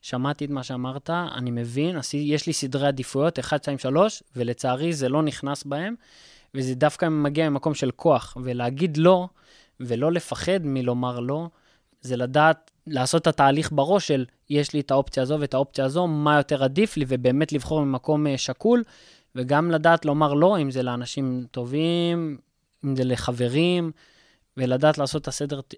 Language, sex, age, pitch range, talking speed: Hebrew, male, 20-39, 135-165 Hz, 160 wpm